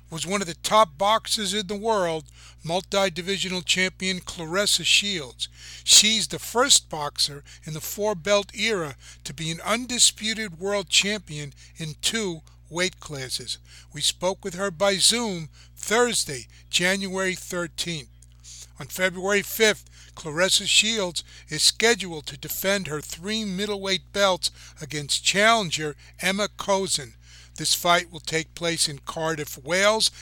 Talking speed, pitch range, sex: 130 wpm, 150-200 Hz, male